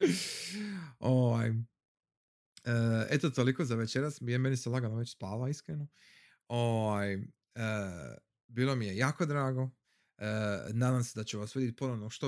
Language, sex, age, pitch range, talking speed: Croatian, male, 30-49, 110-145 Hz, 140 wpm